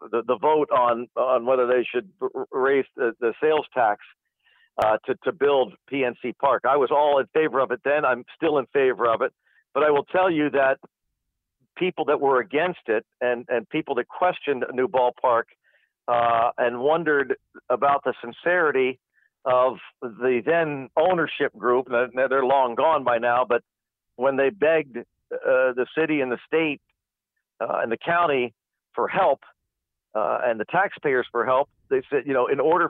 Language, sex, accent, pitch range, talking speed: English, male, American, 125-175 Hz, 175 wpm